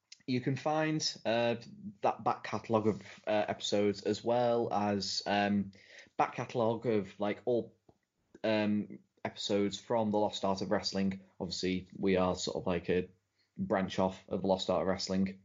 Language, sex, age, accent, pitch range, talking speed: English, male, 20-39, British, 100-120 Hz, 160 wpm